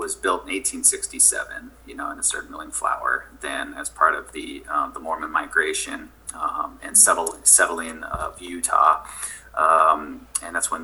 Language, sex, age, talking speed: English, male, 30-49, 160 wpm